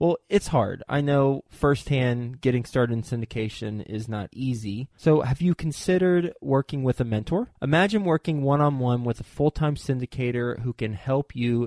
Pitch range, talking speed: 120-150 Hz, 165 wpm